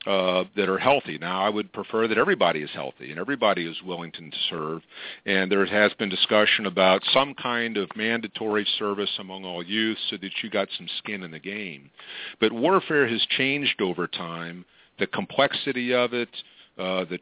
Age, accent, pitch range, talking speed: 50-69, American, 95-120 Hz, 185 wpm